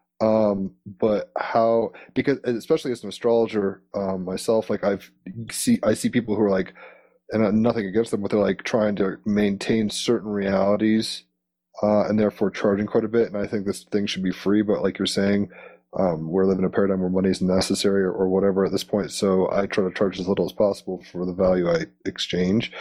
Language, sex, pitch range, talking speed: English, male, 95-110 Hz, 210 wpm